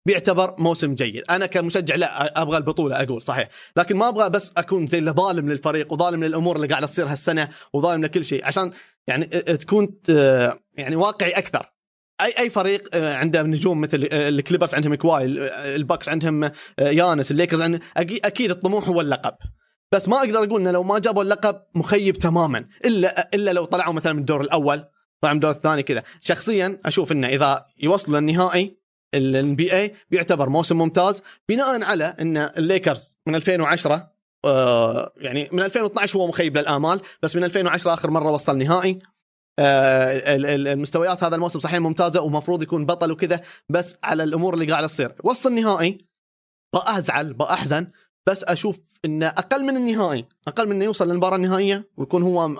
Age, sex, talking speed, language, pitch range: 30-49, male, 160 wpm, Arabic, 150-190 Hz